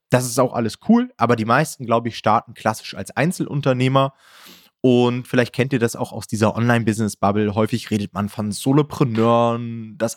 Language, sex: German, male